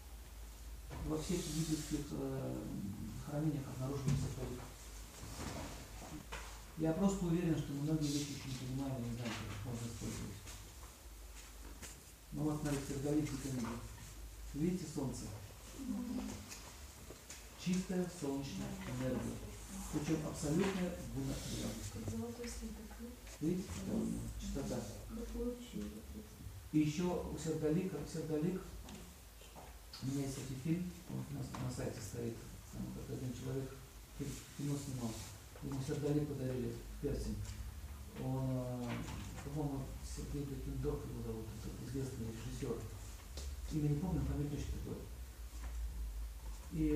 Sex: male